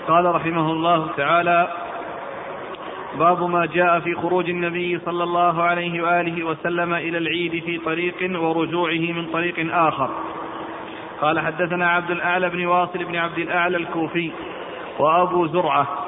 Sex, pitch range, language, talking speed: male, 165-175 Hz, Arabic, 130 wpm